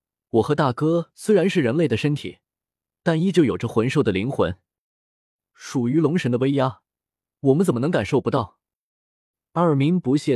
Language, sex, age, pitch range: Chinese, male, 20-39, 115-170 Hz